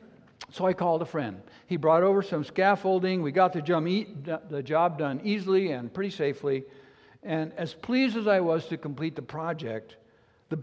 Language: English